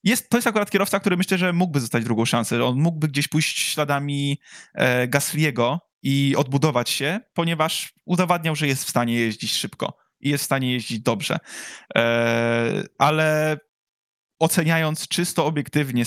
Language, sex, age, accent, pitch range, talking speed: Polish, male, 20-39, native, 125-165 Hz, 155 wpm